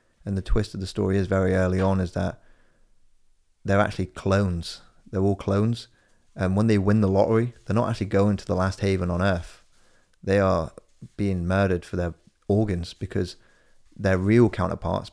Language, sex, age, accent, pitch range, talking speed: English, male, 30-49, British, 90-105 Hz, 180 wpm